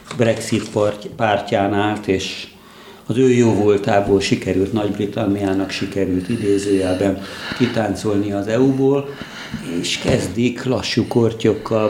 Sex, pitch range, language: male, 100-110 Hz, Hungarian